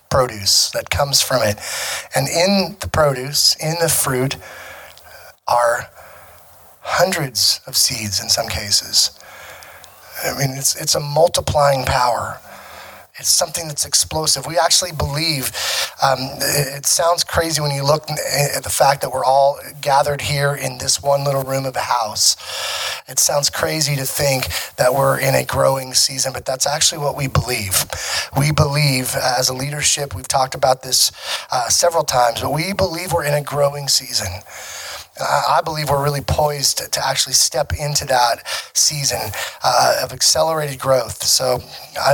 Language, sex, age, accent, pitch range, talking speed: English, male, 30-49, American, 115-150 Hz, 155 wpm